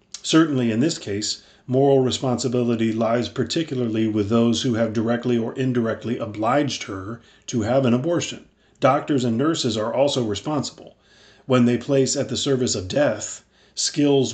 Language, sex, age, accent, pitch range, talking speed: English, male, 40-59, American, 115-135 Hz, 150 wpm